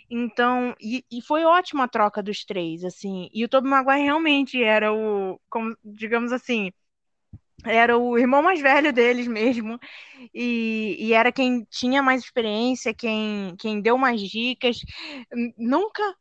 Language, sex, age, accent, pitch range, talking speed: Portuguese, female, 10-29, Brazilian, 215-260 Hz, 150 wpm